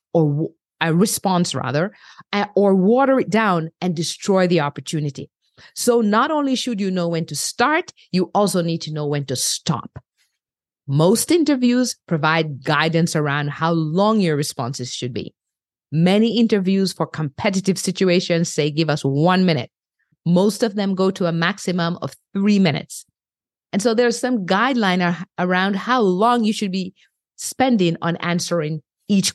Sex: female